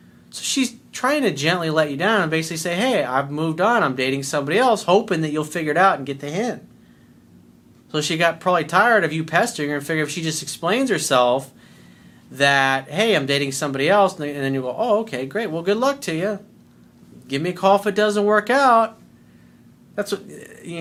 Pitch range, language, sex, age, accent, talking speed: 135-195 Hz, English, male, 40-59, American, 215 wpm